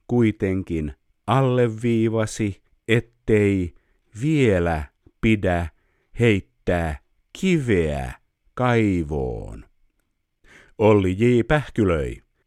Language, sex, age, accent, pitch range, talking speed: Finnish, male, 50-69, native, 85-130 Hz, 60 wpm